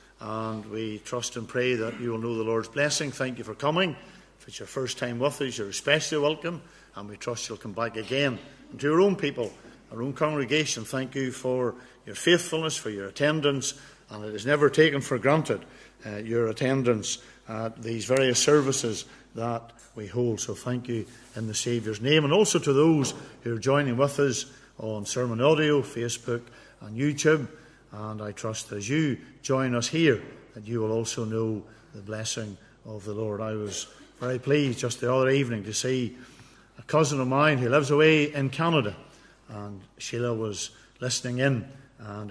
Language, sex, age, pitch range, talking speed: English, male, 50-69, 110-145 Hz, 185 wpm